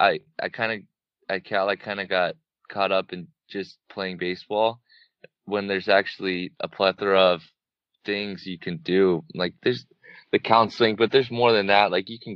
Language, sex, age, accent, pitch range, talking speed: English, male, 20-39, American, 90-100 Hz, 180 wpm